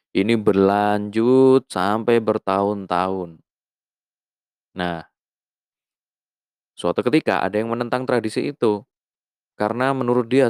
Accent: native